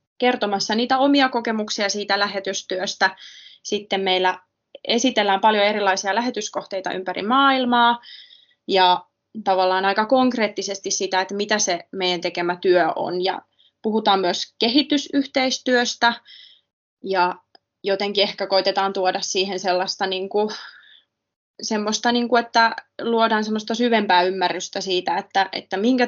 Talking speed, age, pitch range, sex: 115 wpm, 20-39, 190-220 Hz, female